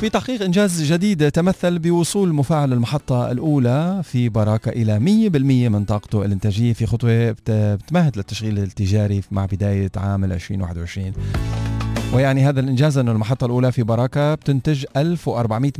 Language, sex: Arabic, male